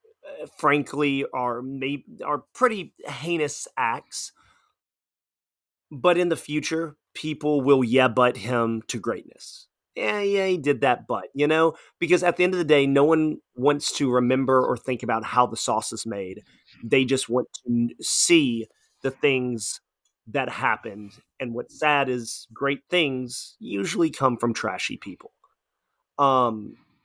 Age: 30-49